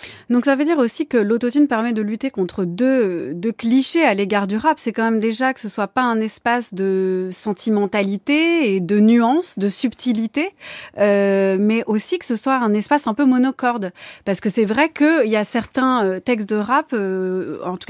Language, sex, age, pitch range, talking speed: French, female, 20-39, 200-255 Hz, 200 wpm